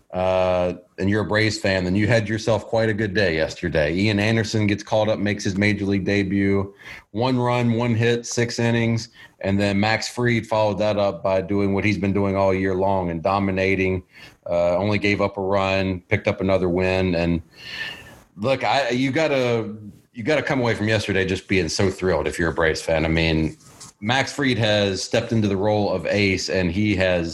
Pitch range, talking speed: 95-110 Hz, 210 wpm